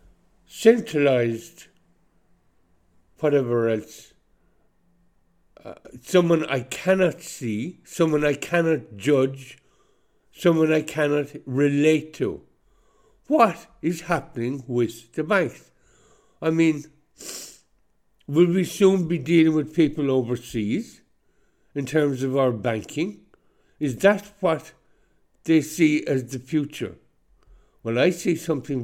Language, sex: English, male